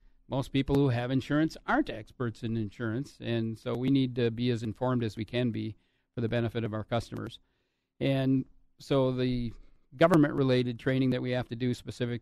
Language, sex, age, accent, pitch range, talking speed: English, male, 50-69, American, 105-125 Hz, 190 wpm